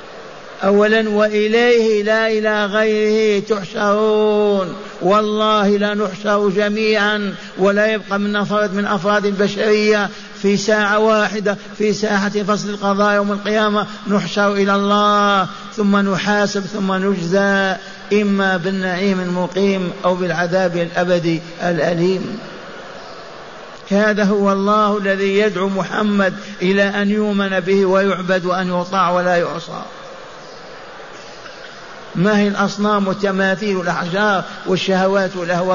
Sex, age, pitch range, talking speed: male, 50-69, 185-210 Hz, 100 wpm